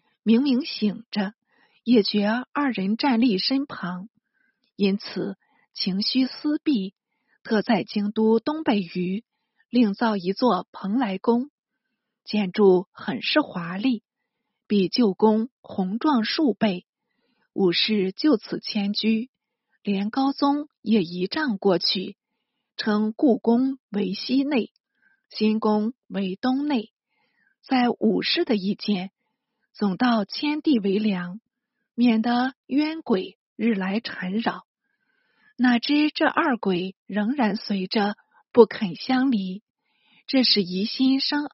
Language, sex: Chinese, female